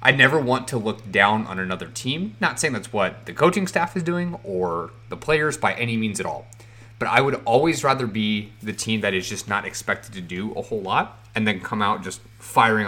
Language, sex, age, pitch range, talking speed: English, male, 30-49, 105-125 Hz, 235 wpm